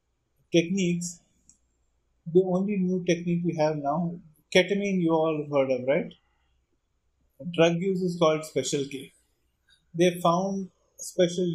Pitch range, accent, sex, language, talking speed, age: 140-175 Hz, Indian, male, English, 125 wpm, 30-49